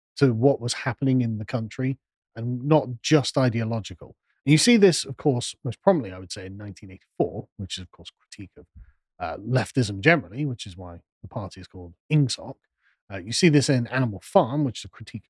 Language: English